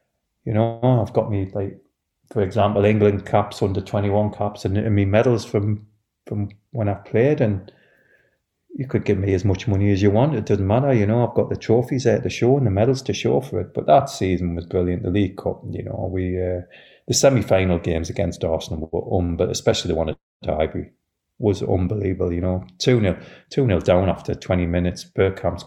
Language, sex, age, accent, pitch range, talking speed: English, male, 30-49, British, 90-110 Hz, 215 wpm